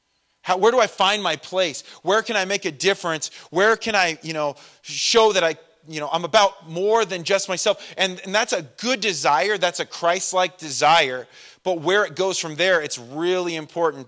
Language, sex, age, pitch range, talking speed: English, male, 30-49, 145-185 Hz, 200 wpm